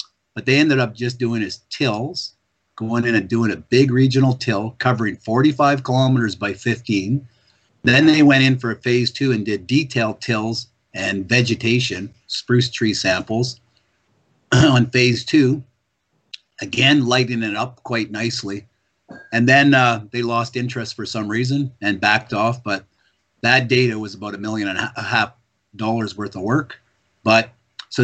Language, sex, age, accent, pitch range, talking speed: English, male, 50-69, American, 105-125 Hz, 160 wpm